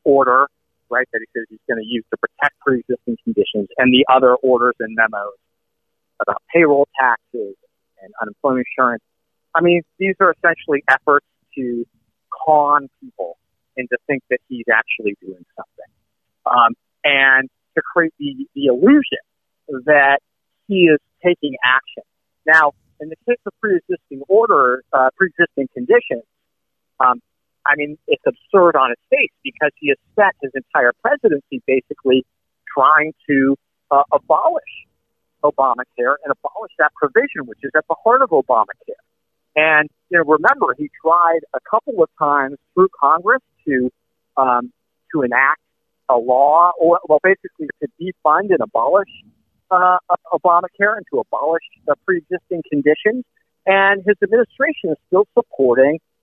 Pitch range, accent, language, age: 130-200 Hz, American, English, 40-59